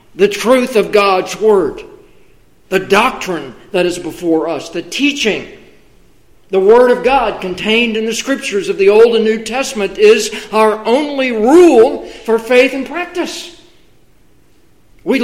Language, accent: English, American